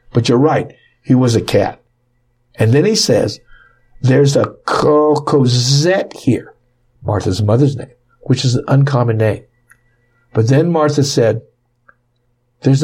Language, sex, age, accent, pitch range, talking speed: English, male, 60-79, American, 115-130 Hz, 130 wpm